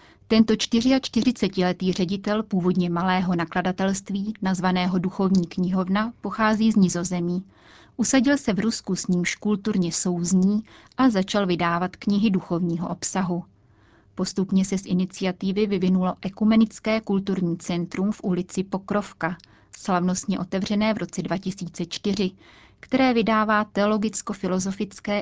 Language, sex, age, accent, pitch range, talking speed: Czech, female, 30-49, native, 180-210 Hz, 105 wpm